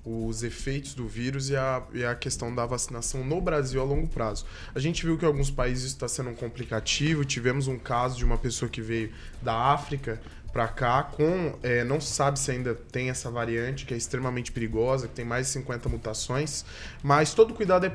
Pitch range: 120-155 Hz